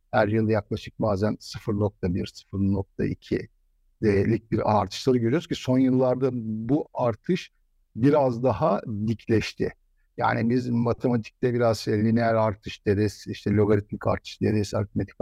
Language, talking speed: Turkish, 120 wpm